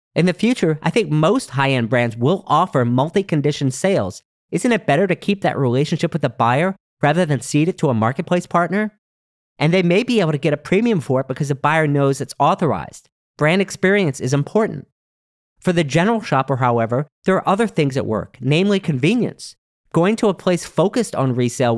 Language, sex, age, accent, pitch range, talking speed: English, male, 40-59, American, 140-190 Hz, 195 wpm